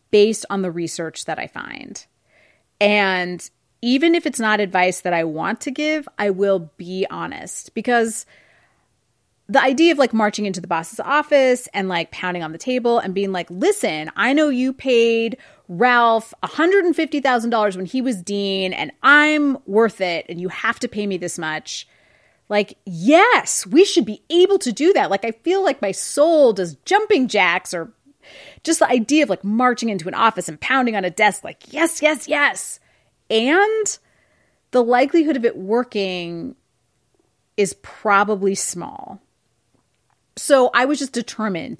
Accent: American